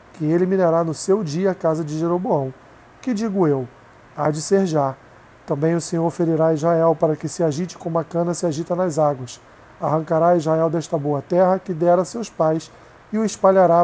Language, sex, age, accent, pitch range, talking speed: Portuguese, male, 40-59, Brazilian, 150-185 Hz, 200 wpm